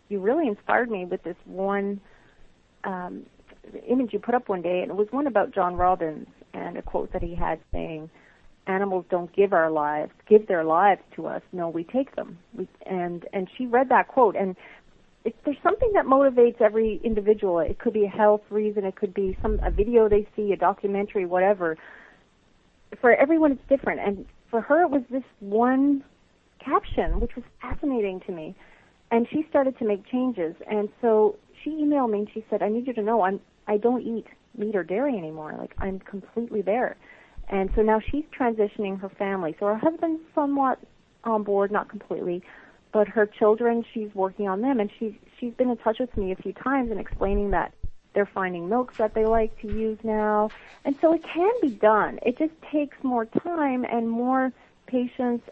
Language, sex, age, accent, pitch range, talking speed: English, female, 40-59, American, 195-250 Hz, 195 wpm